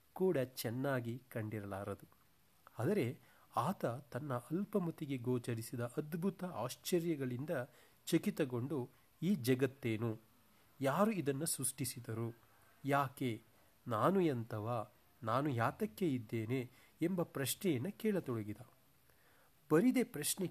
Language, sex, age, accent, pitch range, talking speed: Kannada, male, 40-59, native, 120-170 Hz, 75 wpm